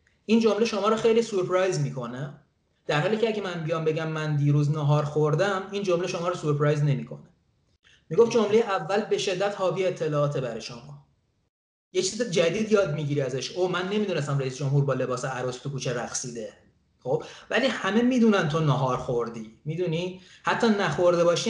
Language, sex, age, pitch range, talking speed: Persian, male, 30-49, 140-185 Hz, 170 wpm